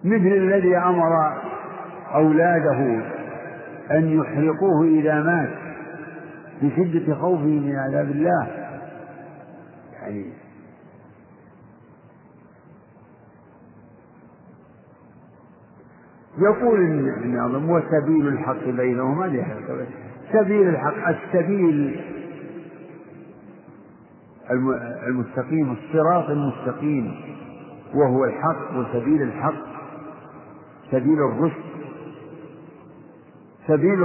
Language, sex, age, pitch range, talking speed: Arabic, male, 50-69, 140-180 Hz, 60 wpm